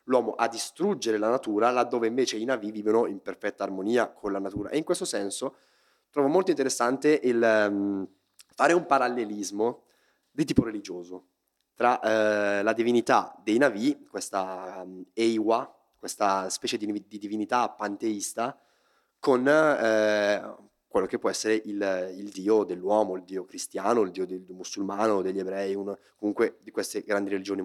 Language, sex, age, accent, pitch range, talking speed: Italian, male, 30-49, native, 95-110 Hz, 155 wpm